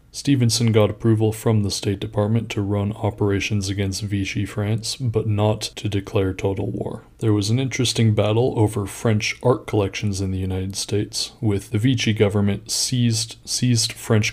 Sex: male